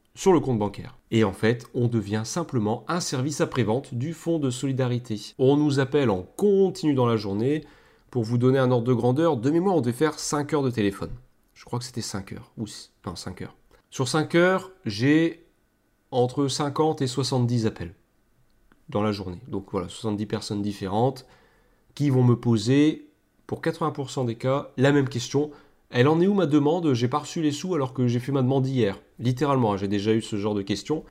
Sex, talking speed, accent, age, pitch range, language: male, 205 wpm, French, 30-49, 120-155 Hz, French